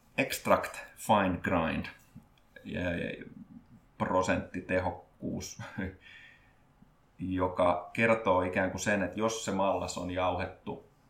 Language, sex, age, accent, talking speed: Finnish, male, 30-49, native, 80 wpm